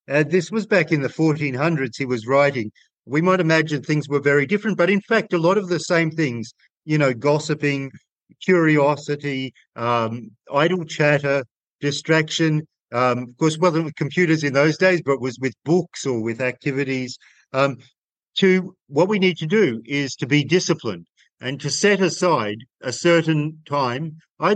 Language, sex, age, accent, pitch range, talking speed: English, male, 50-69, Australian, 125-160 Hz, 175 wpm